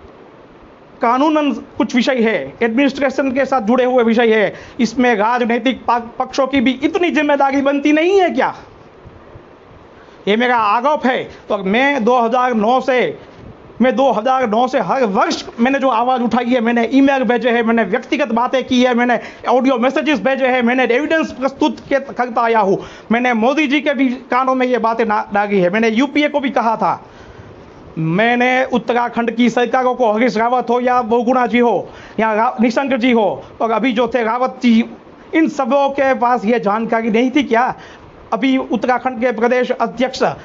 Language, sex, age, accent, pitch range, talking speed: Hindi, male, 40-59, native, 235-270 Hz, 135 wpm